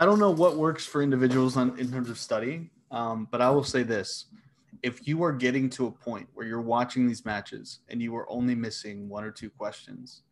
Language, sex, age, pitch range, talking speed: English, male, 20-39, 125-150 Hz, 225 wpm